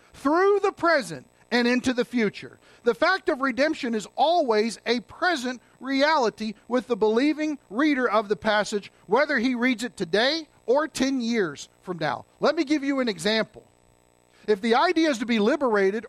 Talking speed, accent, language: 170 wpm, American, English